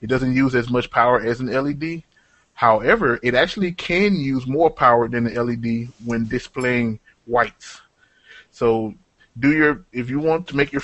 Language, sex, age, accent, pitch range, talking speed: English, male, 20-39, American, 115-130 Hz, 170 wpm